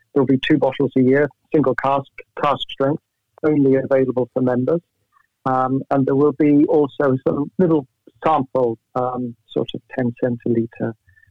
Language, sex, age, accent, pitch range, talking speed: Dutch, male, 50-69, British, 120-135 Hz, 145 wpm